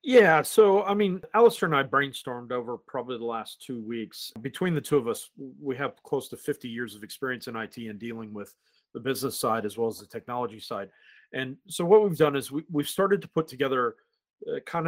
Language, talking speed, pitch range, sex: English, 220 wpm, 125-160 Hz, male